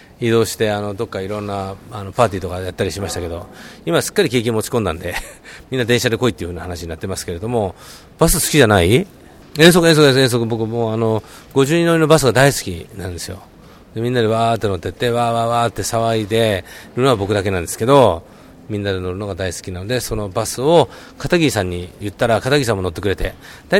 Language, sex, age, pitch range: Japanese, male, 40-59, 95-135 Hz